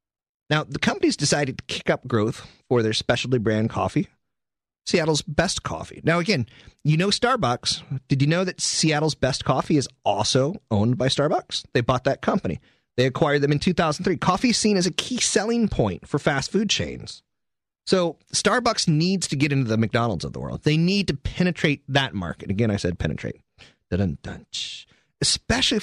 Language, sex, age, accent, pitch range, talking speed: English, male, 30-49, American, 105-155 Hz, 175 wpm